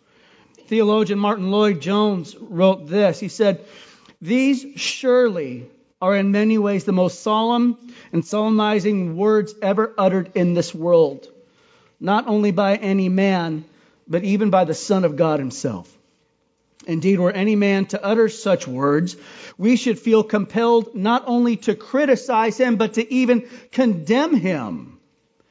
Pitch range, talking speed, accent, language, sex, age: 195-245 Hz, 140 wpm, American, English, male, 40-59